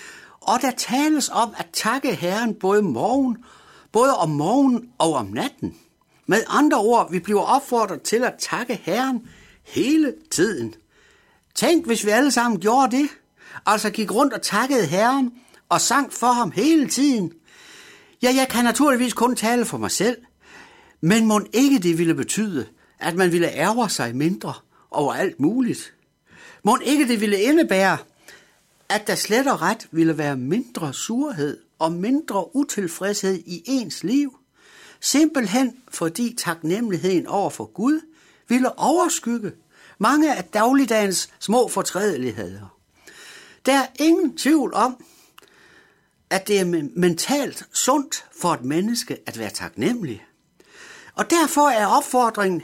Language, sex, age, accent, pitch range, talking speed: Danish, male, 60-79, native, 185-275 Hz, 140 wpm